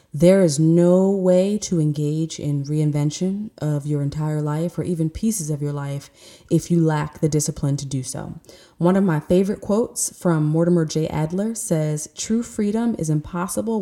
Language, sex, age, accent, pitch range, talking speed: English, female, 20-39, American, 155-180 Hz, 175 wpm